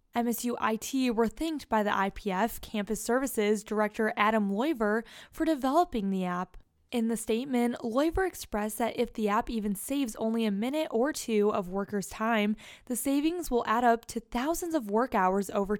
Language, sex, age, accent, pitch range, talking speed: English, female, 10-29, American, 210-255 Hz, 175 wpm